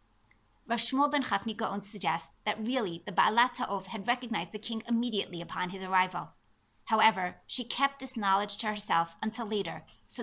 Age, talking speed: 30-49, 170 wpm